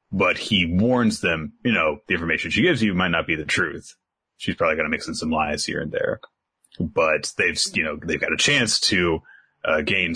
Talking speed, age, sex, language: 225 wpm, 30-49, male, English